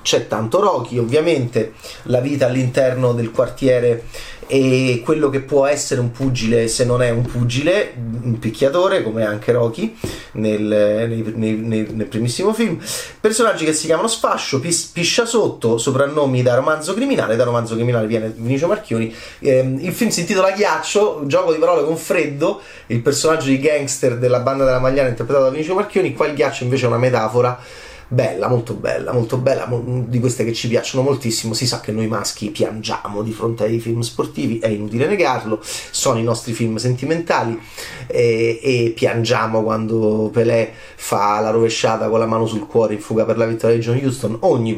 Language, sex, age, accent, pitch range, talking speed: Italian, male, 30-49, native, 115-145 Hz, 175 wpm